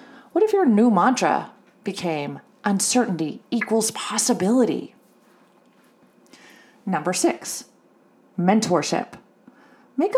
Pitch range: 185-250 Hz